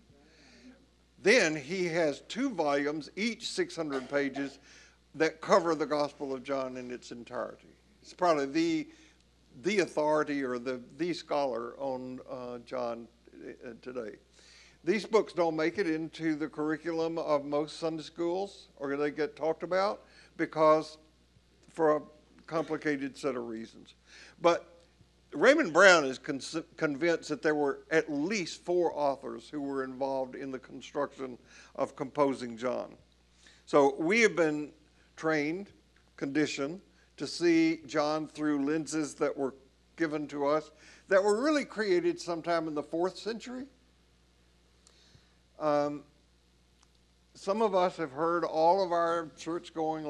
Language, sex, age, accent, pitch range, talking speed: English, male, 60-79, American, 135-170 Hz, 130 wpm